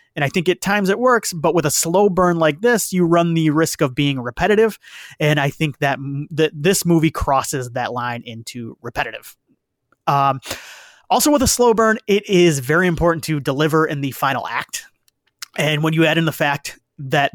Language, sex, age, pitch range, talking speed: English, male, 30-49, 140-180 Hz, 195 wpm